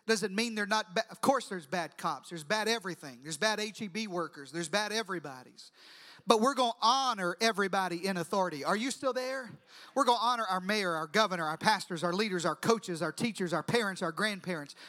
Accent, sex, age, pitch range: American, male, 40-59, 180-240 Hz